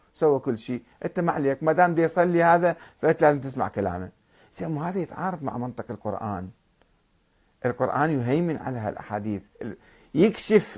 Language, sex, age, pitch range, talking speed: Arabic, male, 50-69, 105-170 Hz, 130 wpm